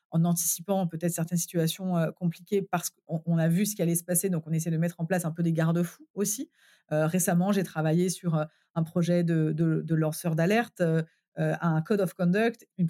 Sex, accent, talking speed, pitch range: female, French, 225 wpm, 160-190 Hz